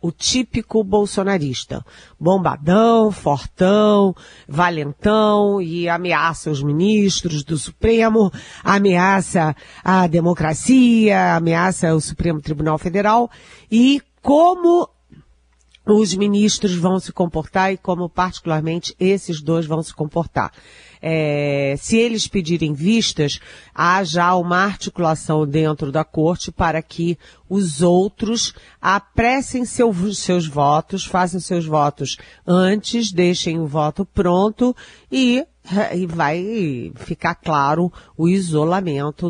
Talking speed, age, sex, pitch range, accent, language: 105 wpm, 40-59, female, 150-195 Hz, Brazilian, Portuguese